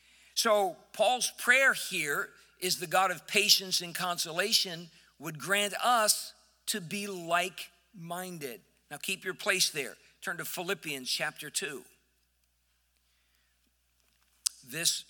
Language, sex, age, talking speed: English, male, 50-69, 115 wpm